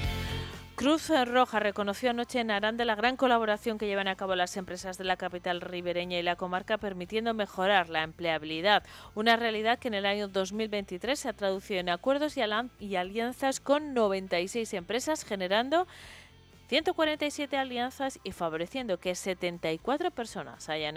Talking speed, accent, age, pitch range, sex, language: 150 wpm, Spanish, 30-49, 170-225 Hz, female, Spanish